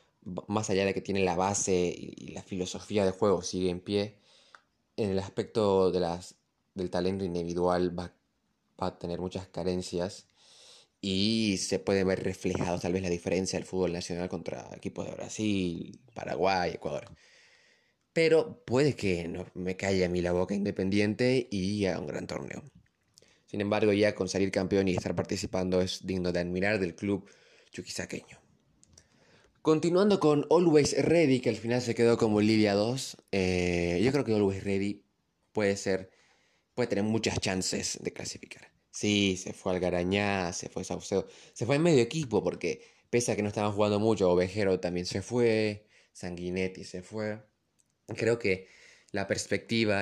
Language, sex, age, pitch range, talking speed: Spanish, male, 20-39, 90-110 Hz, 160 wpm